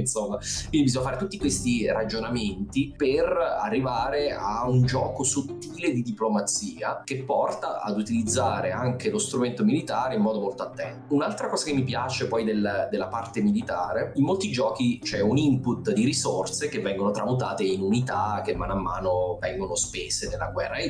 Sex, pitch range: male, 105-145 Hz